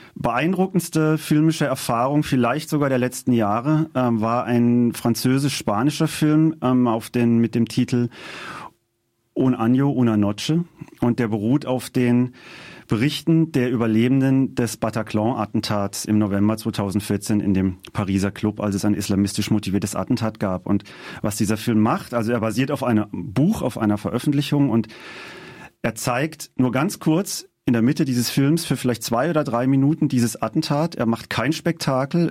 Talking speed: 155 wpm